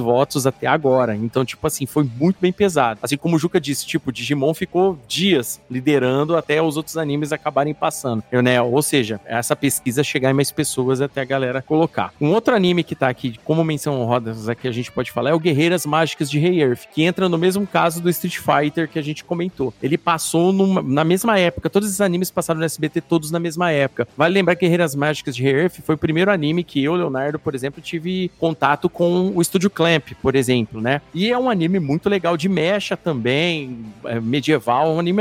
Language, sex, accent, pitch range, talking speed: Portuguese, male, Brazilian, 135-175 Hz, 220 wpm